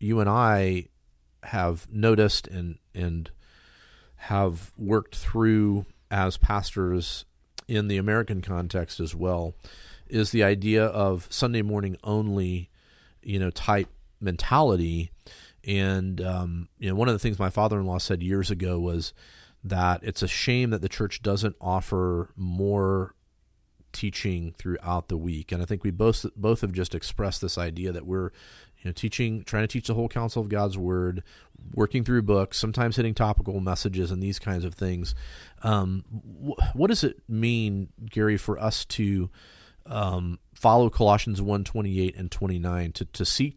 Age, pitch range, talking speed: 40-59, 90-110 Hz, 155 wpm